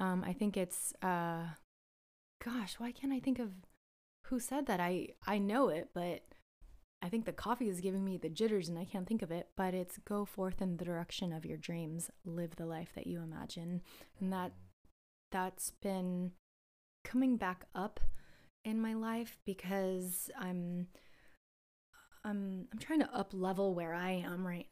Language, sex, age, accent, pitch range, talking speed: English, female, 20-39, American, 175-210 Hz, 175 wpm